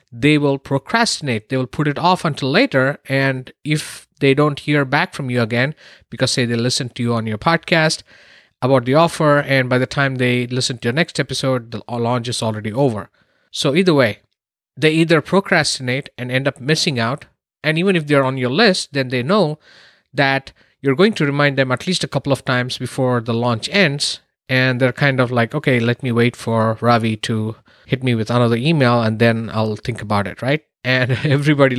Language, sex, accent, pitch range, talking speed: English, male, Indian, 120-145 Hz, 205 wpm